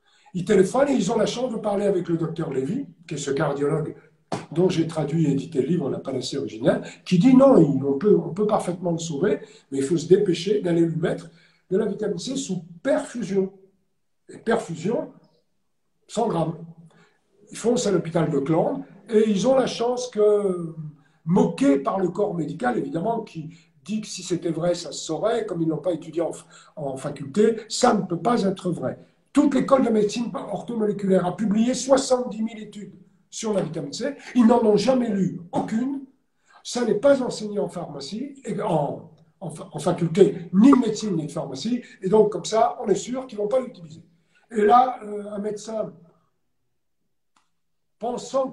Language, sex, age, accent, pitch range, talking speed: French, male, 60-79, French, 170-225 Hz, 190 wpm